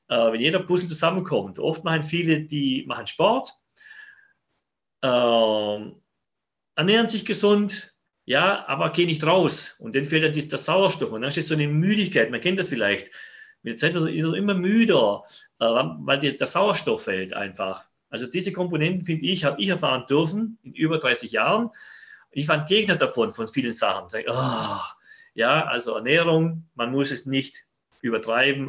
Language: German